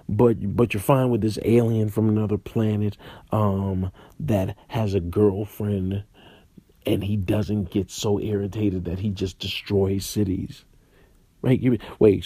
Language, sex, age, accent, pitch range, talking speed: English, male, 40-59, American, 95-135 Hz, 135 wpm